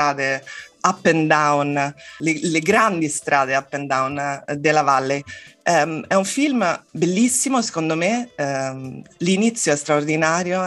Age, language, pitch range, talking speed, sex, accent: 20-39, Italian, 145-175 Hz, 120 wpm, female, native